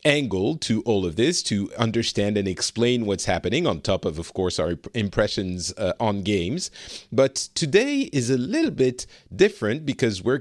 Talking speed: 175 wpm